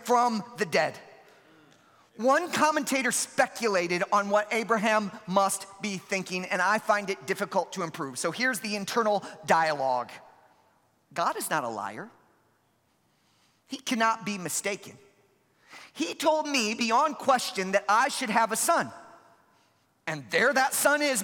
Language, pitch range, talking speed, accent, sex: English, 200-275 Hz, 140 wpm, American, male